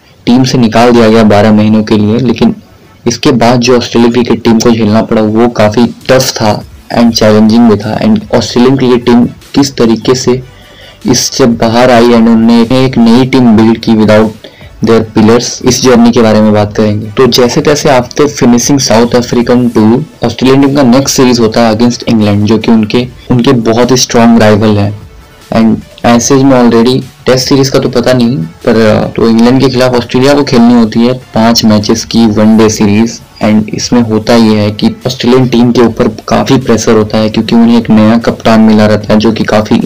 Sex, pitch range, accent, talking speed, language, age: male, 110-125 Hz, native, 195 wpm, Hindi, 20-39